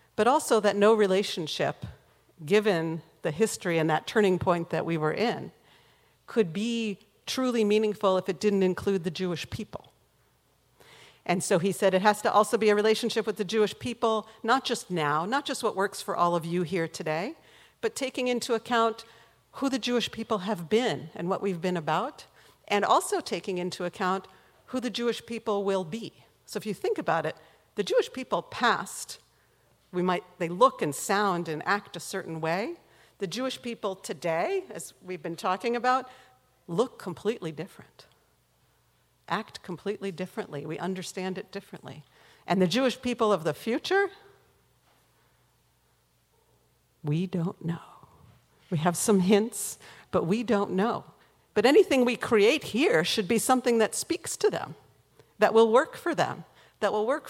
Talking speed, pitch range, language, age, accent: 165 wpm, 175-230 Hz, English, 50-69, American